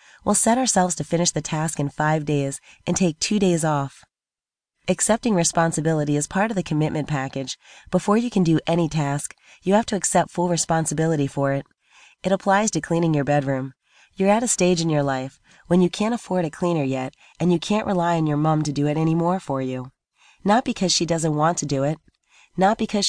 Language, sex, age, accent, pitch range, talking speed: English, female, 30-49, American, 150-185 Hz, 210 wpm